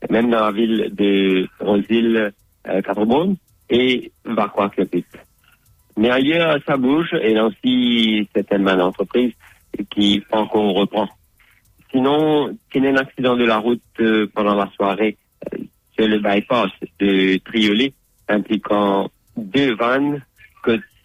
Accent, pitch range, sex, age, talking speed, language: French, 100-120 Hz, male, 50-69, 130 wpm, English